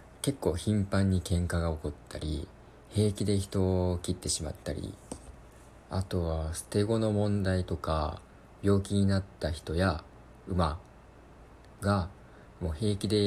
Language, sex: Japanese, male